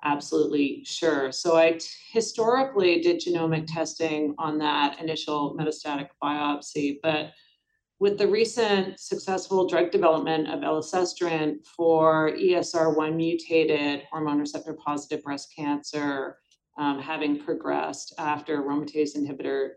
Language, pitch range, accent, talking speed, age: English, 145-165 Hz, American, 110 wpm, 40-59